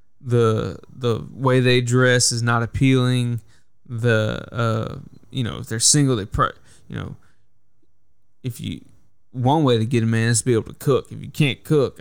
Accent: American